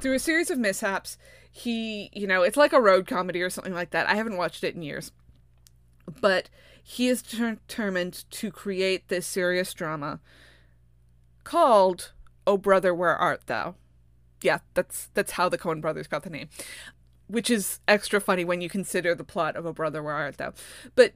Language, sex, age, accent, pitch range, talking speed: English, female, 20-39, American, 165-220 Hz, 180 wpm